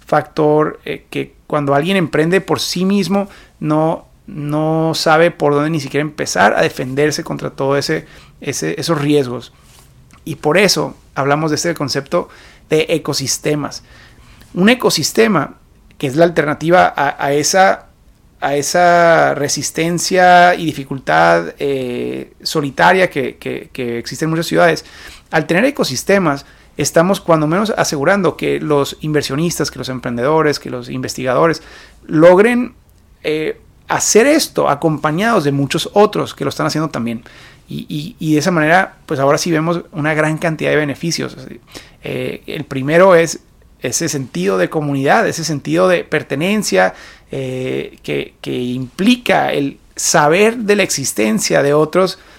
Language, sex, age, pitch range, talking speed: Spanish, male, 30-49, 140-170 Hz, 140 wpm